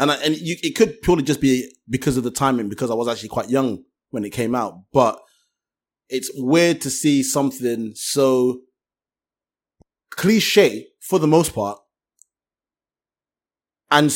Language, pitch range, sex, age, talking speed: English, 130-170 Hz, male, 20-39, 155 wpm